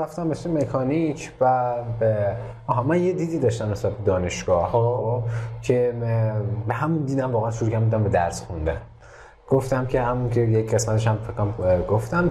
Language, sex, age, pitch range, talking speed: Persian, male, 30-49, 105-130 Hz, 145 wpm